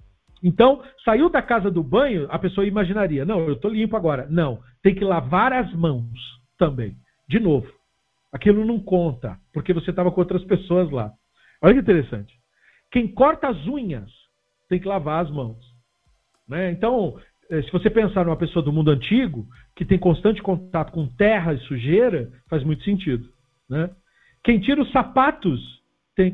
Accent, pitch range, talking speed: Brazilian, 140-230 Hz, 165 wpm